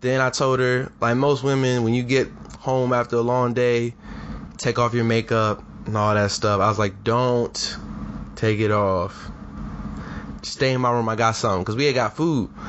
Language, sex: English, male